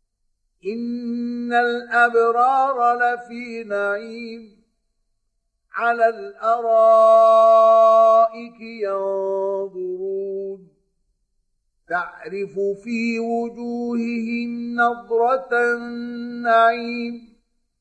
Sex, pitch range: male, 180-230 Hz